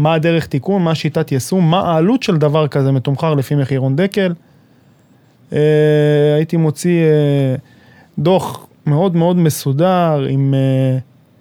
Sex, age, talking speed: male, 20-39, 115 wpm